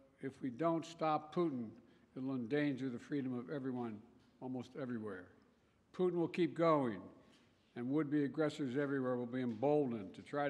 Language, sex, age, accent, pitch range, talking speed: Russian, male, 60-79, American, 130-155 Hz, 155 wpm